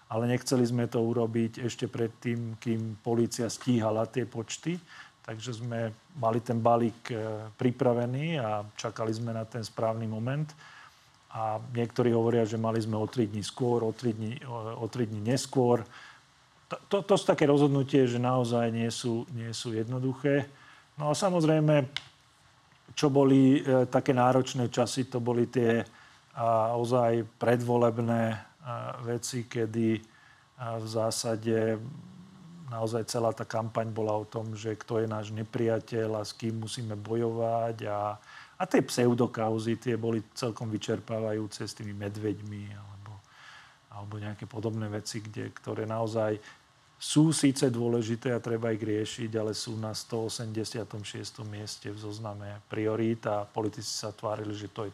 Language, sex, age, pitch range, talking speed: Slovak, male, 40-59, 110-125 Hz, 140 wpm